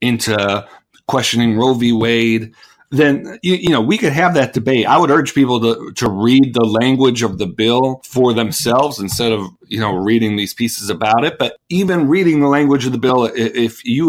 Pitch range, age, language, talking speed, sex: 120-145 Hz, 50-69, English, 200 wpm, male